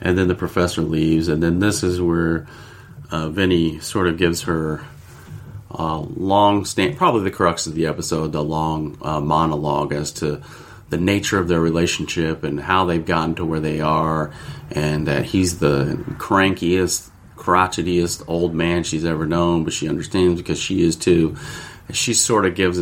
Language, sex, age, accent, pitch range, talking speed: English, male, 30-49, American, 80-90 Hz, 175 wpm